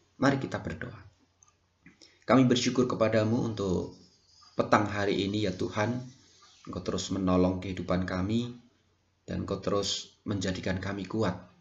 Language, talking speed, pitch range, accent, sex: Indonesian, 120 wpm, 90-110 Hz, native, male